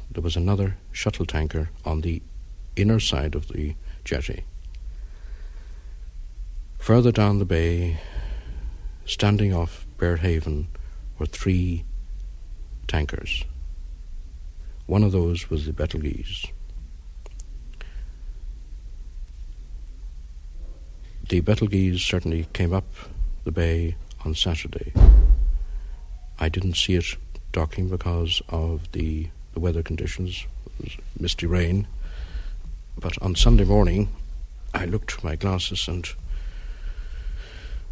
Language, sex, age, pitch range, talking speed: English, male, 60-79, 75-90 Hz, 100 wpm